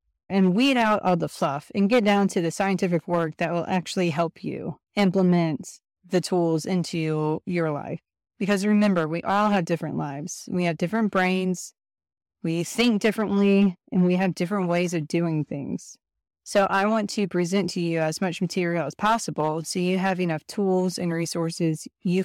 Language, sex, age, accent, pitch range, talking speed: English, female, 30-49, American, 165-195 Hz, 180 wpm